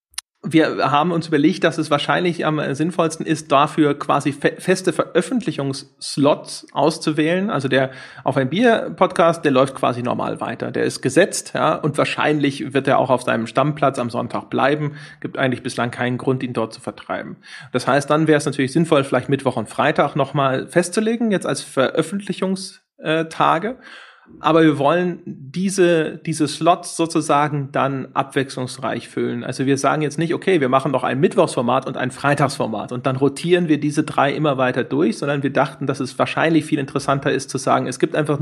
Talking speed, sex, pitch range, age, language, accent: 170 wpm, male, 135-165 Hz, 30-49, German, German